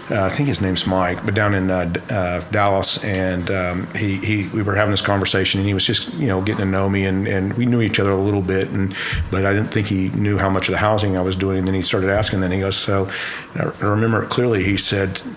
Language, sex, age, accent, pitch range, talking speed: English, male, 50-69, American, 95-110 Hz, 285 wpm